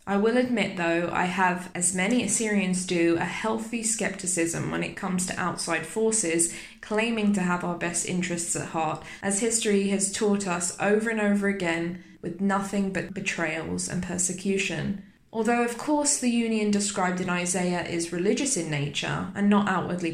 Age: 10-29